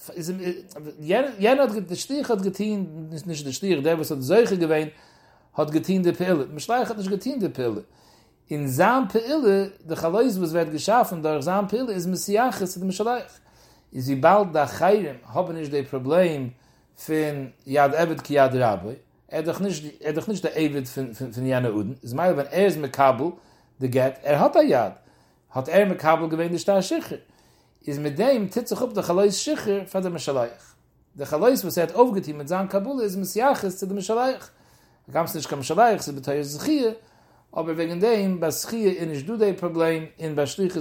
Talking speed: 70 wpm